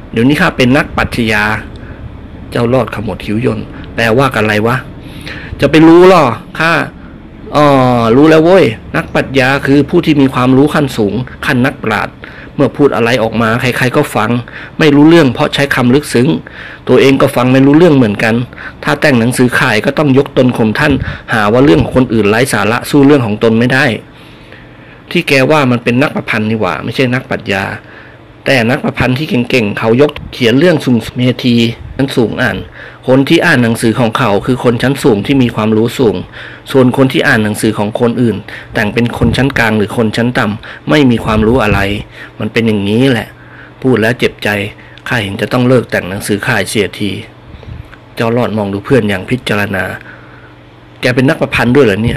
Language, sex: Thai, male